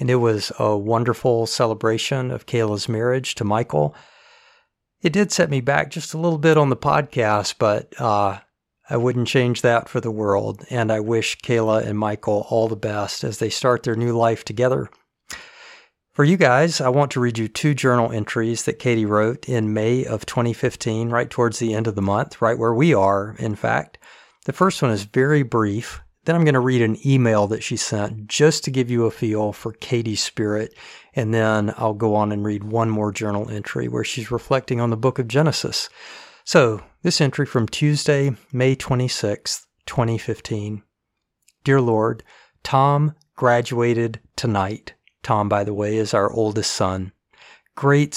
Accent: American